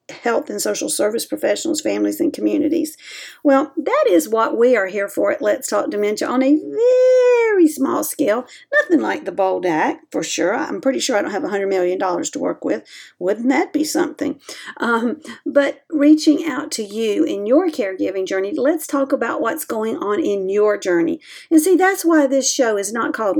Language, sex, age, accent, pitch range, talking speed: English, female, 50-69, American, 205-305 Hz, 190 wpm